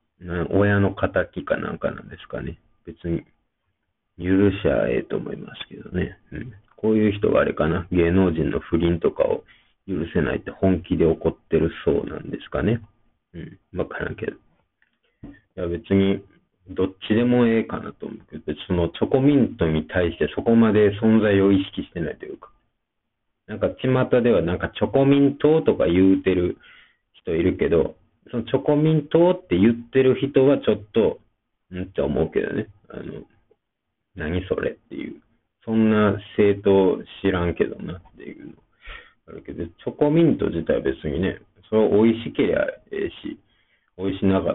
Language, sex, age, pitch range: Japanese, male, 40-59, 85-110 Hz